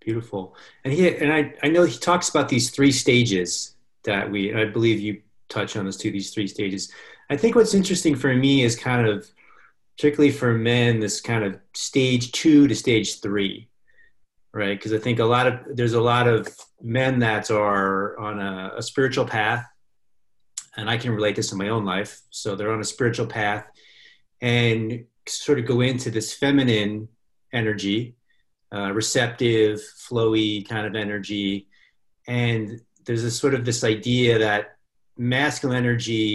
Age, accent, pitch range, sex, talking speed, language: 30-49, American, 105-125 Hz, male, 170 wpm, English